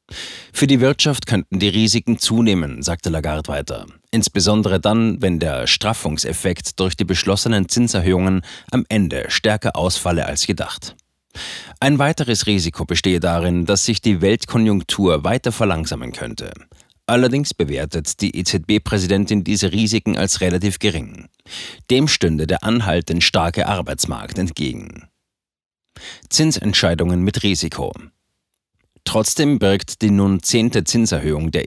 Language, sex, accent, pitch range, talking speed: German, male, German, 90-110 Hz, 120 wpm